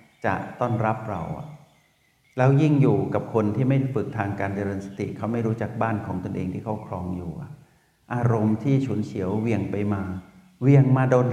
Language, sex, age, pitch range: Thai, male, 60-79, 100-125 Hz